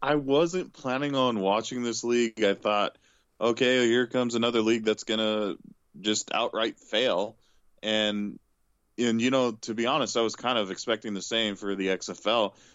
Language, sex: English, male